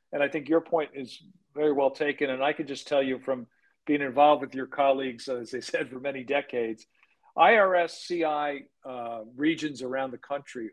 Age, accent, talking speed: 50-69, American, 190 wpm